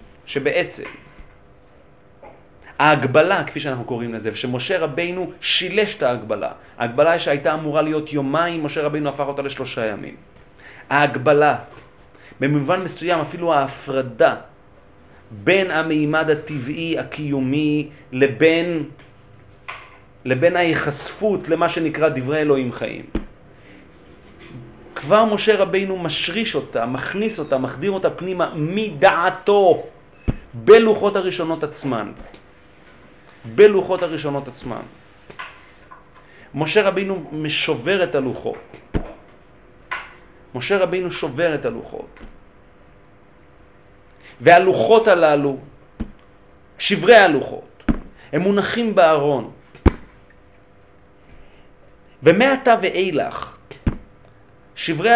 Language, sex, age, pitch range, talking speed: Hebrew, male, 40-59, 120-180 Hz, 85 wpm